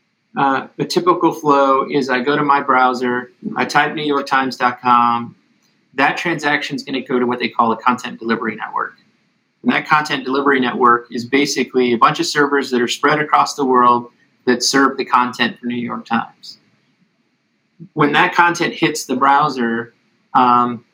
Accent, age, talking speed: American, 30-49, 170 wpm